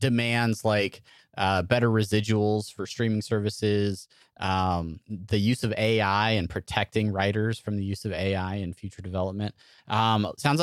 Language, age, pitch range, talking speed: English, 30-49, 100-120 Hz, 145 wpm